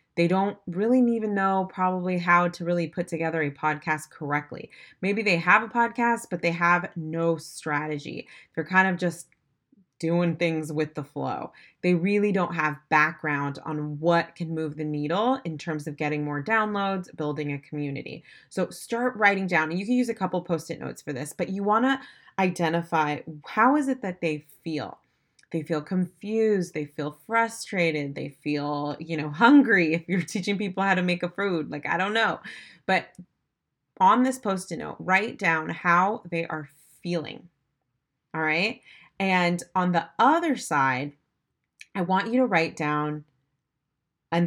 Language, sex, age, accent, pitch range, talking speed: English, female, 20-39, American, 150-195 Hz, 170 wpm